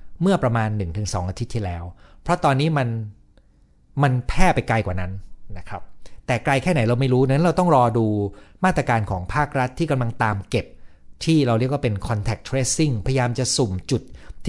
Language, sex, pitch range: Thai, male, 95-135 Hz